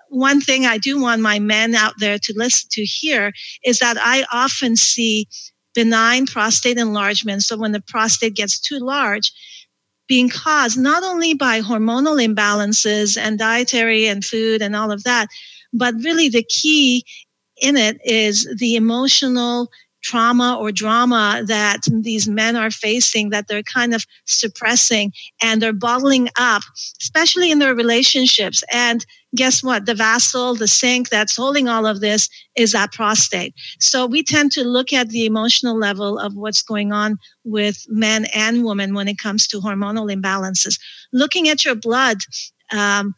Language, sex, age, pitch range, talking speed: English, female, 50-69, 215-250 Hz, 160 wpm